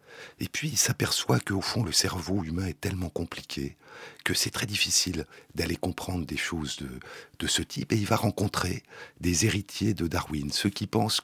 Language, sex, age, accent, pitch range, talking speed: French, male, 60-79, French, 80-105 Hz, 185 wpm